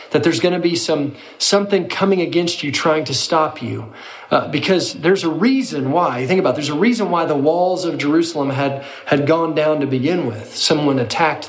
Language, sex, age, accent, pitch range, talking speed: English, male, 40-59, American, 145-175 Hz, 210 wpm